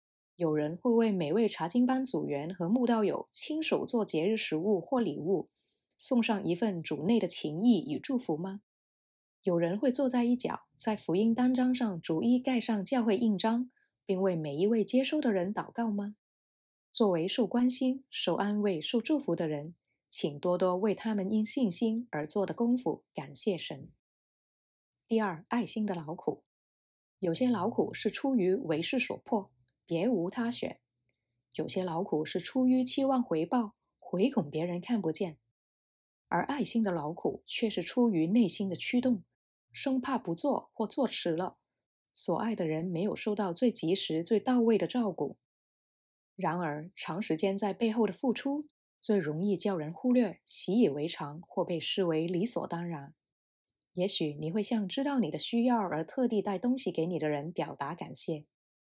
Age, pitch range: 20-39, 170-235 Hz